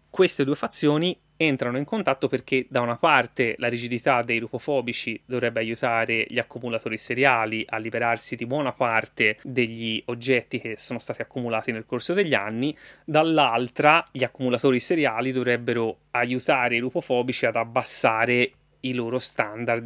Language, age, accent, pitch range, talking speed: Italian, 20-39, native, 120-150 Hz, 140 wpm